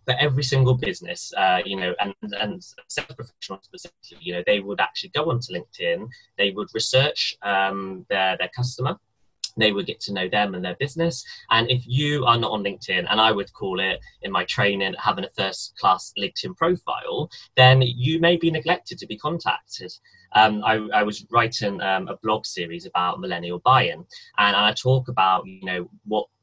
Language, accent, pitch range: English, British, 100-145 Hz